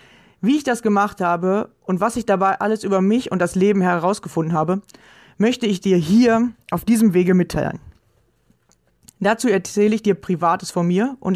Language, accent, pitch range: German, German, 180-215 Hz